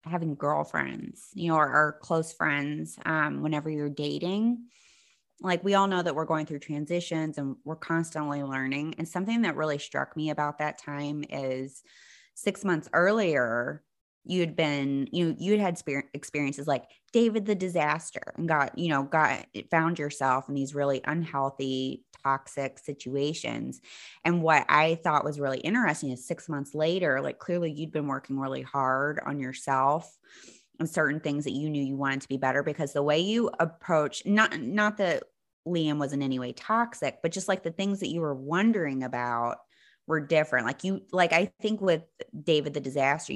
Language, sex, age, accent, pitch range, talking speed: English, female, 20-39, American, 135-165 Hz, 180 wpm